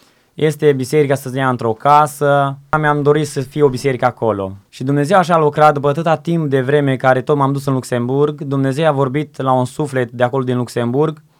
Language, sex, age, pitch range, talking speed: Romanian, male, 20-39, 130-150 Hz, 210 wpm